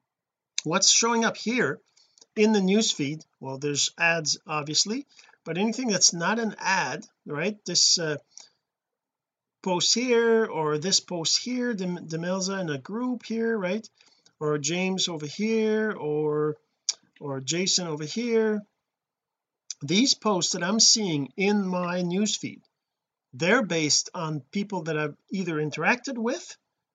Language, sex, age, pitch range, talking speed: English, male, 40-59, 160-215 Hz, 130 wpm